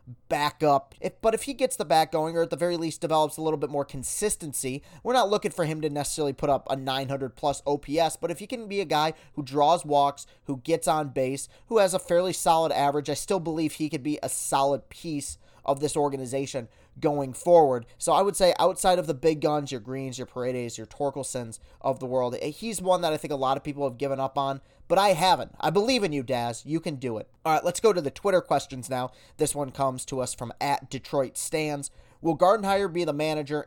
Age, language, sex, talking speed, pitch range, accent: 20-39, English, male, 240 wpm, 135-170 Hz, American